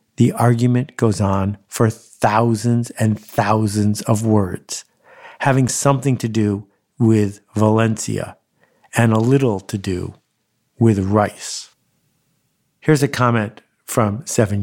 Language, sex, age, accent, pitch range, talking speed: English, male, 50-69, American, 105-130 Hz, 115 wpm